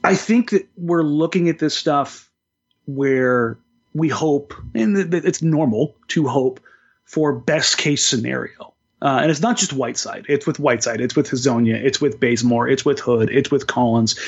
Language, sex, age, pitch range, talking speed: English, male, 30-49, 135-180 Hz, 170 wpm